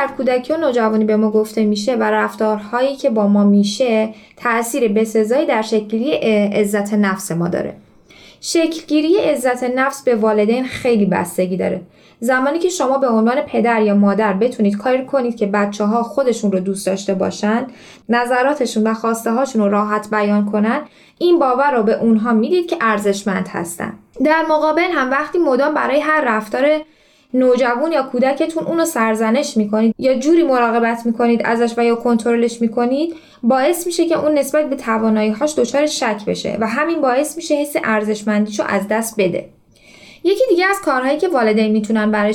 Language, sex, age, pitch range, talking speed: Persian, female, 10-29, 215-280 Hz, 165 wpm